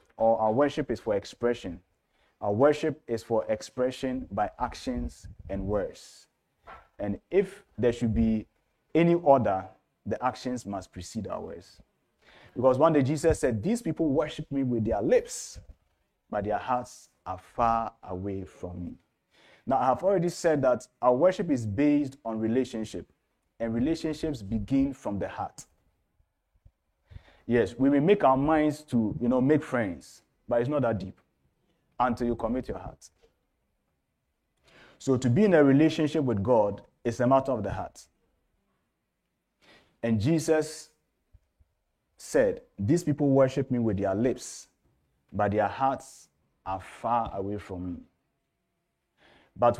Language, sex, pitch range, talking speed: English, male, 100-145 Hz, 145 wpm